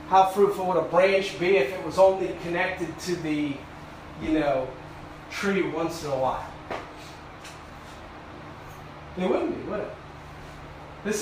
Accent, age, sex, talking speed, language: American, 40-59, male, 140 wpm, English